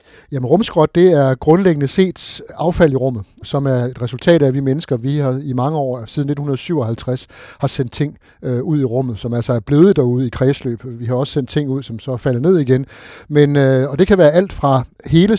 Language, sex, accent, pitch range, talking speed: Danish, male, native, 130-155 Hz, 225 wpm